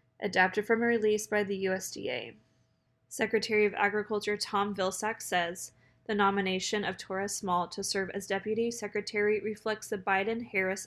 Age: 20-39